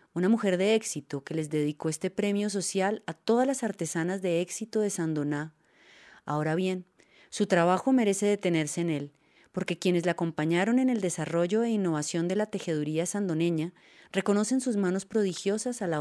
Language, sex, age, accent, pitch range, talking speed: Spanish, female, 30-49, Colombian, 160-205 Hz, 170 wpm